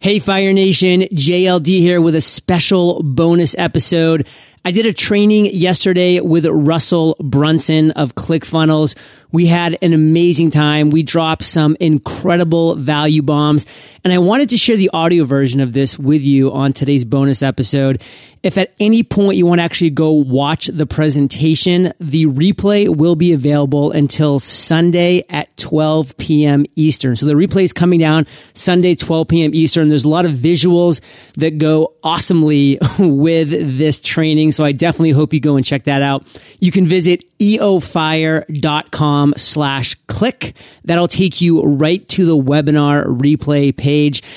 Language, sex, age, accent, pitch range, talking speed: English, male, 30-49, American, 145-175 Hz, 155 wpm